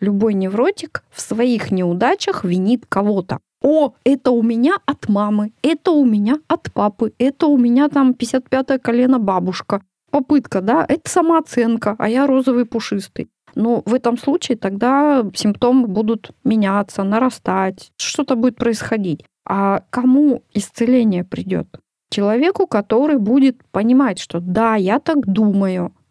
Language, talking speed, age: Russian, 135 wpm, 20-39